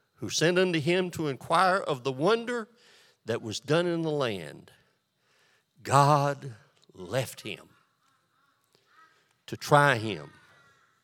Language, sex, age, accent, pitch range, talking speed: English, male, 60-79, American, 135-190 Hz, 115 wpm